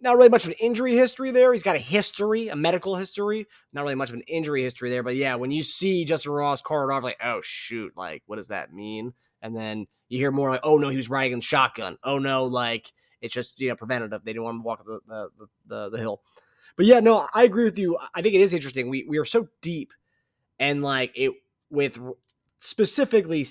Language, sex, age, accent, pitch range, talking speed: English, male, 20-39, American, 125-170 Hz, 240 wpm